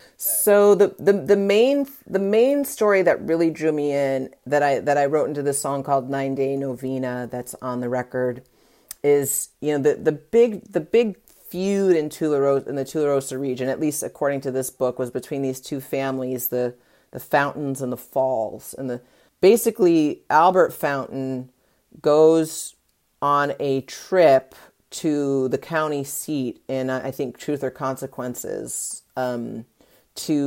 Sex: female